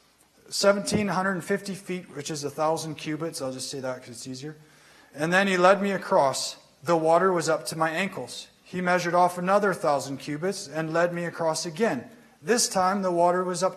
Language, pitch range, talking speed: English, 155-190 Hz, 190 wpm